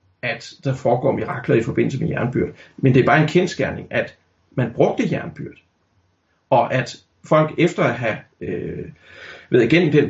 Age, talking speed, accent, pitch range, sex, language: 40-59, 165 wpm, native, 120-155 Hz, male, Danish